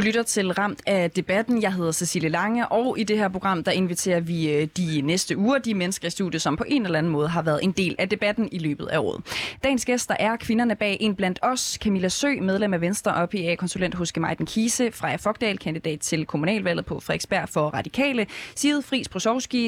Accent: native